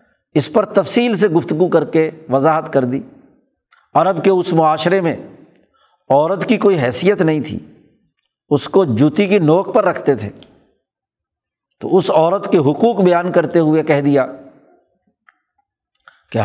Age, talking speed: 60-79, 150 wpm